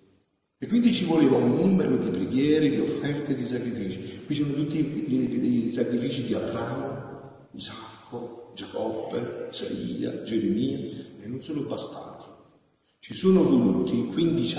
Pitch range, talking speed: 100-150 Hz, 130 wpm